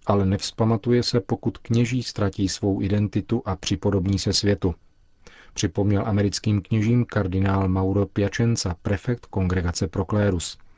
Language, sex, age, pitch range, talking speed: Czech, male, 40-59, 95-105 Hz, 115 wpm